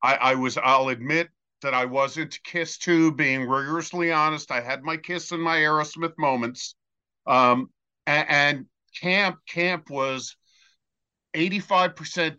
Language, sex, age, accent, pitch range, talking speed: English, male, 50-69, American, 130-160 Hz, 140 wpm